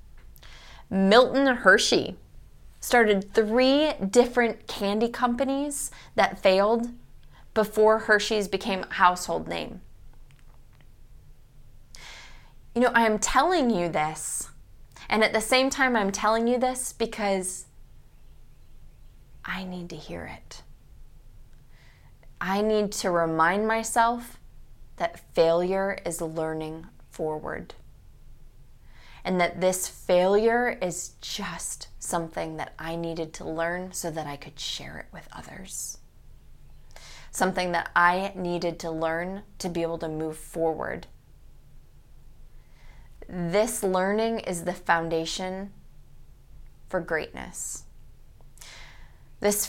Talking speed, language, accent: 105 wpm, English, American